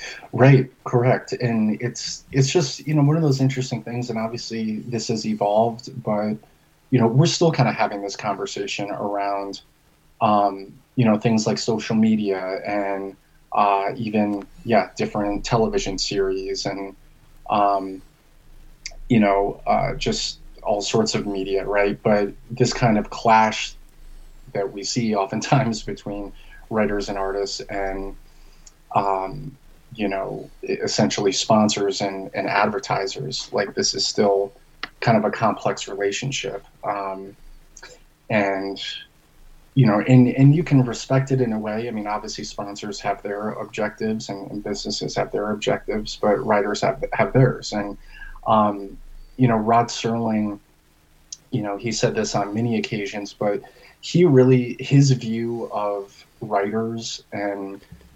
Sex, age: male, 20-39